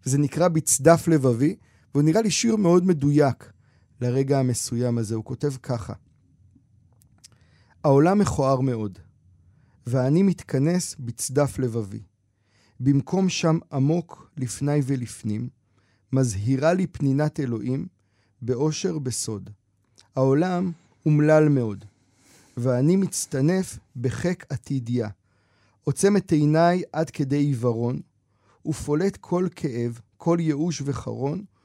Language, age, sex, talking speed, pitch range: Hebrew, 40-59, male, 100 wpm, 115-150 Hz